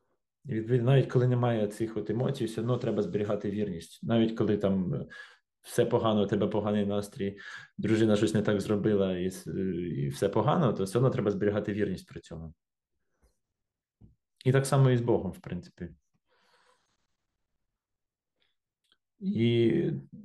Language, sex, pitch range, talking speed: Ukrainian, male, 100-125 Hz, 135 wpm